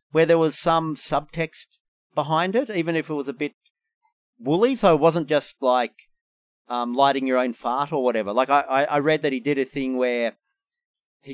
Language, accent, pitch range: English, Australian, 130-190 Hz